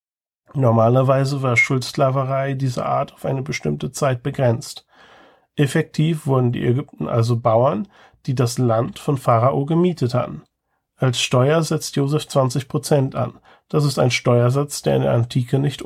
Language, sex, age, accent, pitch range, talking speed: German, male, 40-59, German, 120-140 Hz, 150 wpm